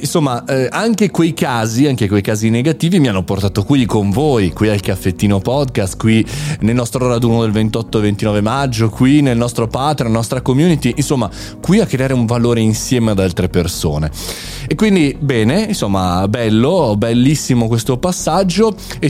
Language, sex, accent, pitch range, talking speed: Italian, male, native, 110-155 Hz, 165 wpm